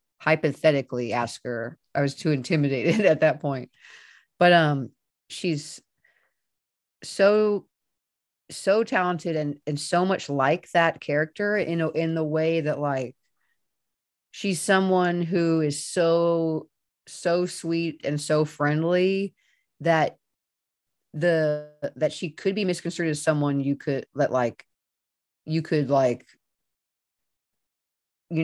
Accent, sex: American, female